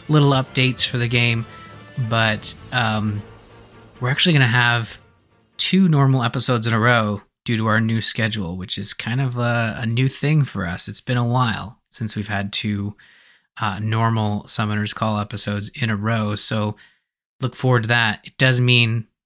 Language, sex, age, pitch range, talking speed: English, male, 20-39, 110-135 Hz, 175 wpm